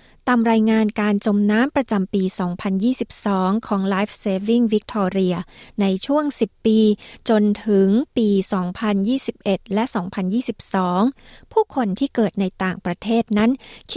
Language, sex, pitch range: Thai, female, 200-235 Hz